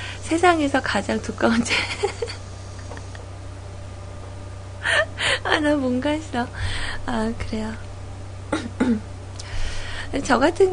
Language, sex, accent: Korean, female, native